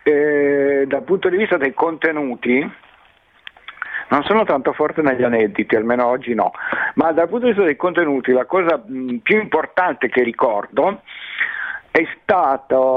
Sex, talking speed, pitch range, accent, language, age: male, 150 wpm, 125-180 Hz, native, Italian, 50-69